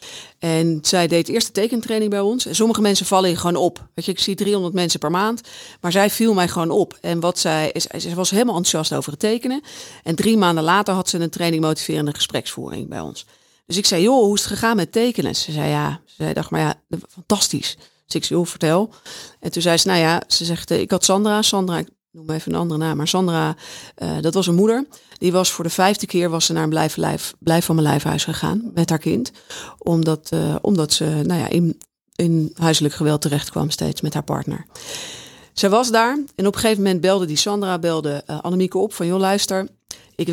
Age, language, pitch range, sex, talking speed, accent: 40-59, Dutch, 165-210 Hz, female, 230 wpm, Dutch